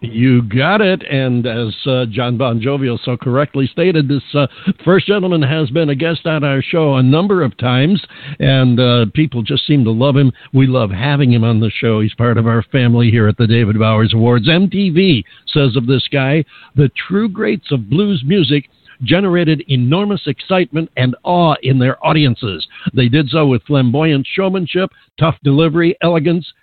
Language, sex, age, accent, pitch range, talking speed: English, male, 60-79, American, 125-160 Hz, 185 wpm